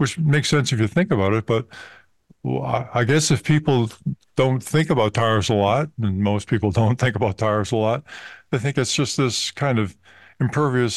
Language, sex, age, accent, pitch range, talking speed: English, male, 50-69, American, 105-130 Hz, 195 wpm